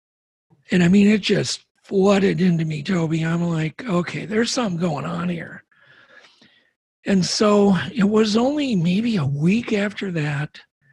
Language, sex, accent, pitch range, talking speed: English, male, American, 160-205 Hz, 150 wpm